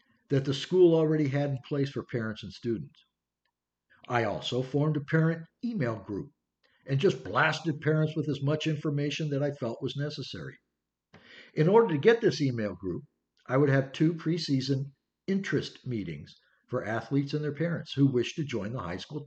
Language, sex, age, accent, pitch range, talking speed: English, male, 60-79, American, 125-175 Hz, 180 wpm